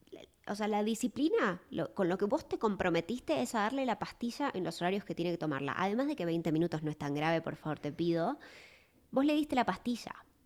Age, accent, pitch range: 20-39, Argentinian, 175-255 Hz